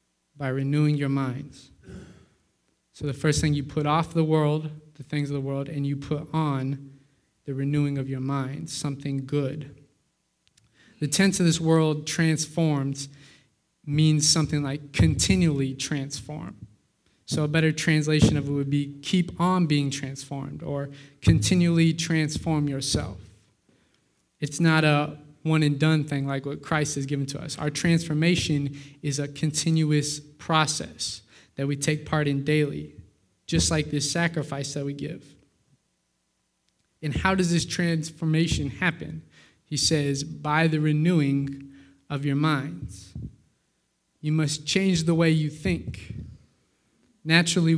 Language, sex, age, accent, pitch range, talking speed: English, male, 20-39, American, 140-155 Hz, 140 wpm